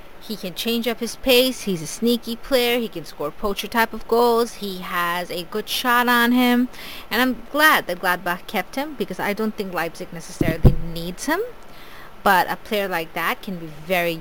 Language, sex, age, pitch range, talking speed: English, female, 30-49, 175-245 Hz, 200 wpm